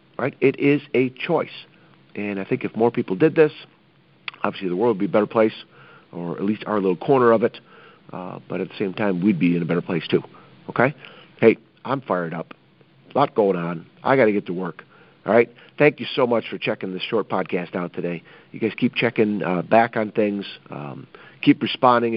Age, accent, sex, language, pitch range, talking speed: 50-69, American, male, English, 95-120 Hz, 220 wpm